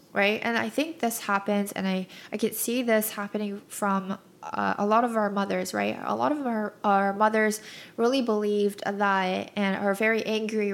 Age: 10-29